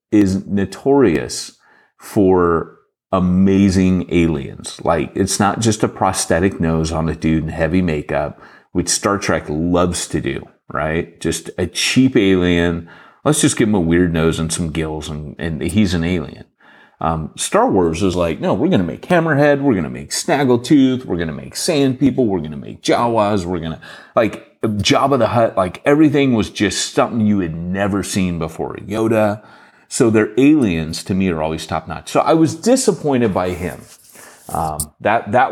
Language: English